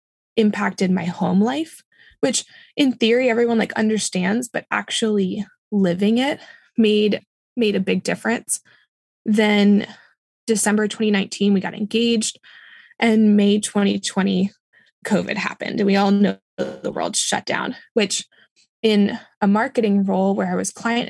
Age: 20-39